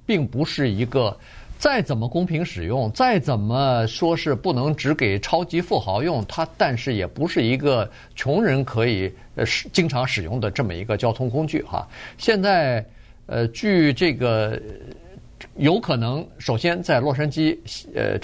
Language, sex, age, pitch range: Chinese, male, 50-69, 115-155 Hz